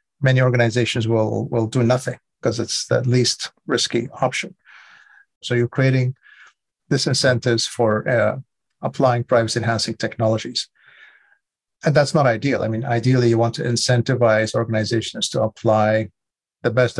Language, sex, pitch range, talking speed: English, male, 115-145 Hz, 130 wpm